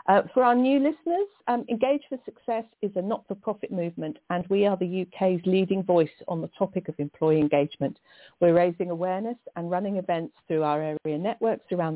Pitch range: 155-200 Hz